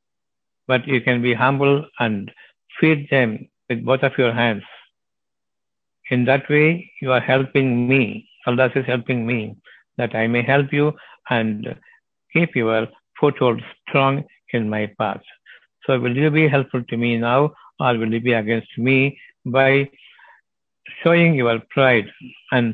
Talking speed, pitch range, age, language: 155 wpm, 120-135 Hz, 60-79, Tamil